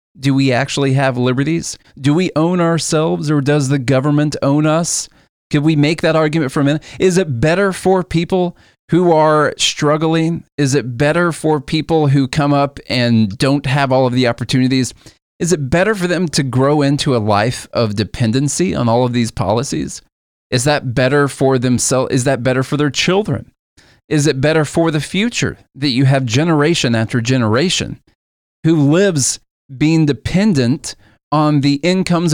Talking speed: 175 wpm